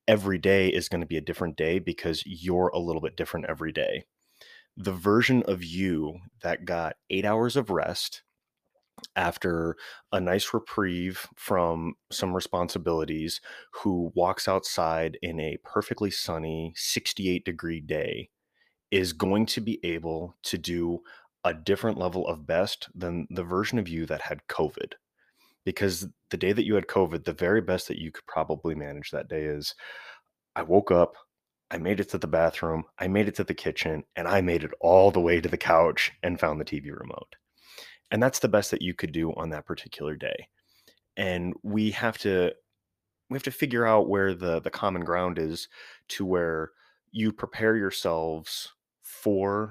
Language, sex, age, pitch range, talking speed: English, male, 20-39, 85-105 Hz, 175 wpm